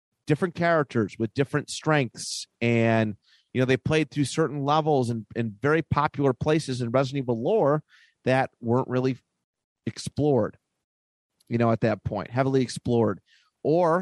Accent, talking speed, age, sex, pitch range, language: American, 145 wpm, 30-49, male, 115-155 Hz, English